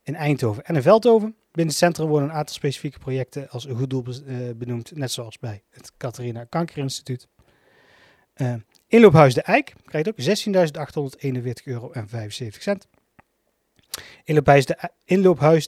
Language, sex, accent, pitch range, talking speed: Dutch, male, Dutch, 125-160 Hz, 140 wpm